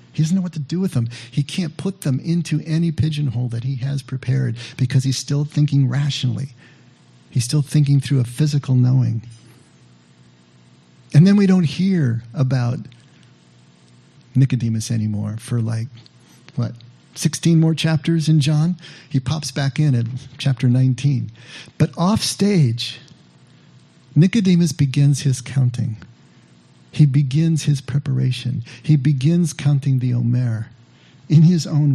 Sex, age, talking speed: male, 50-69, 135 wpm